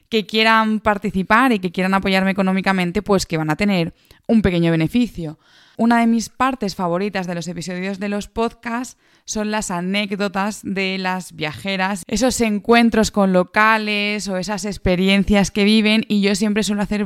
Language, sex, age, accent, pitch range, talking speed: Spanish, female, 20-39, Spanish, 185-220 Hz, 165 wpm